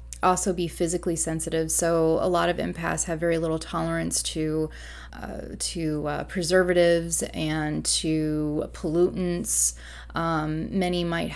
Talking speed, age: 125 wpm, 20-39